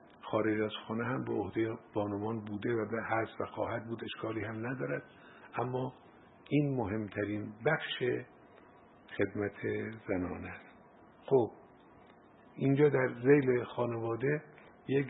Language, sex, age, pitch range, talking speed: Persian, male, 50-69, 100-120 Hz, 115 wpm